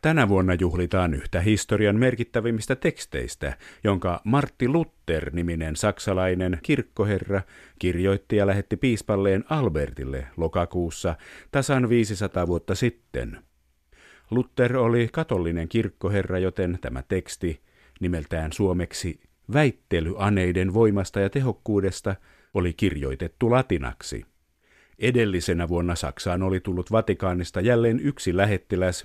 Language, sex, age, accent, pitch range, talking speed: Finnish, male, 50-69, native, 85-110 Hz, 100 wpm